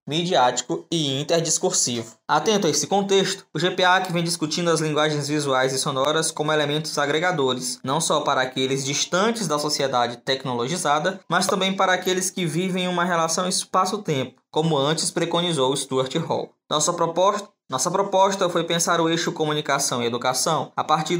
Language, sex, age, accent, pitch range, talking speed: Portuguese, male, 20-39, Brazilian, 135-175 Hz, 155 wpm